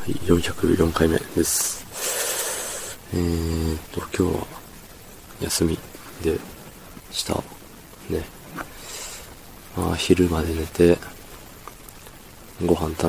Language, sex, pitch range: Japanese, male, 85-95 Hz